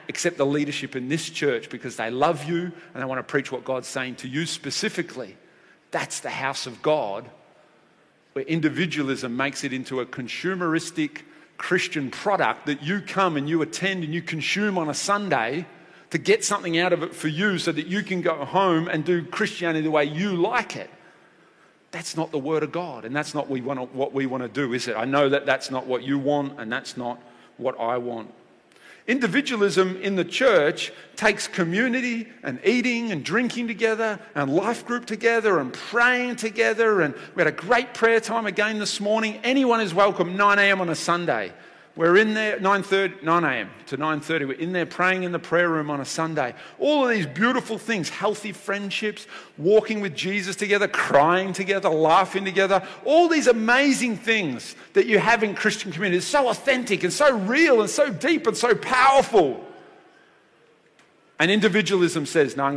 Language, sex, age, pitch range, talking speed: English, male, 40-59, 145-215 Hz, 185 wpm